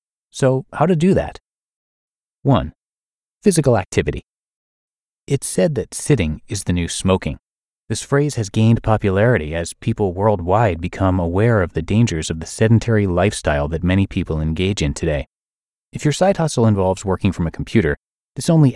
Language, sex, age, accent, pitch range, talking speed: English, male, 30-49, American, 85-125 Hz, 160 wpm